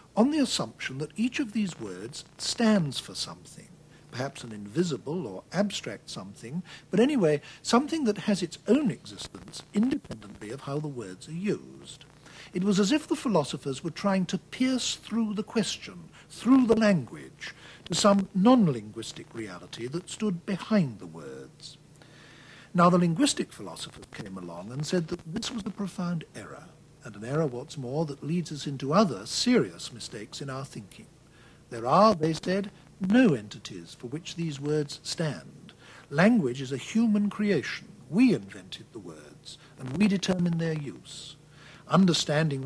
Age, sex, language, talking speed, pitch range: 60-79, male, English, 160 wpm, 140-195 Hz